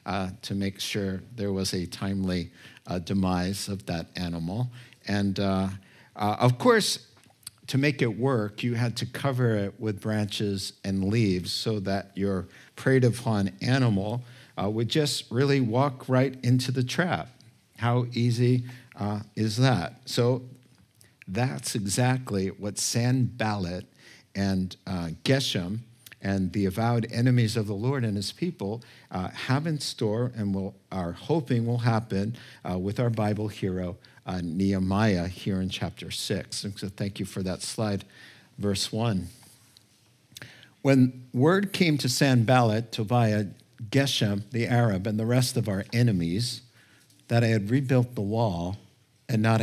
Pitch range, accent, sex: 100-125 Hz, American, male